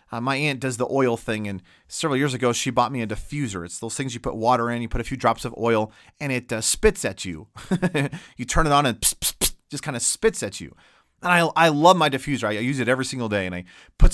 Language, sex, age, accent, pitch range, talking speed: English, male, 40-59, American, 120-175 Hz, 265 wpm